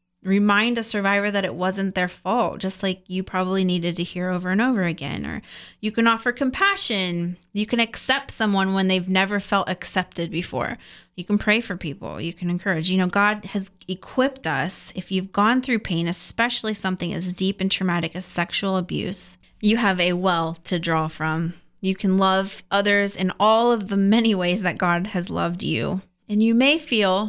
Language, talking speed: English, 195 wpm